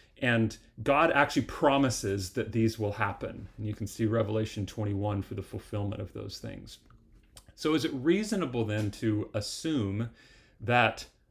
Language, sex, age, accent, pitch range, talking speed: English, male, 30-49, American, 105-130 Hz, 150 wpm